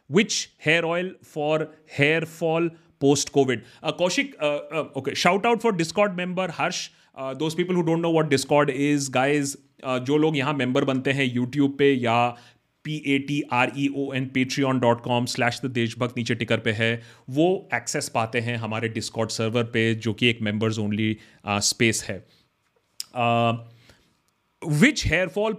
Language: Hindi